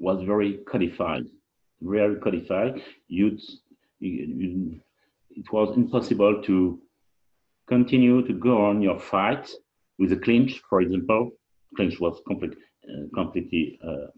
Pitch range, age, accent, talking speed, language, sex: 100-125 Hz, 50-69, French, 105 wpm, English, male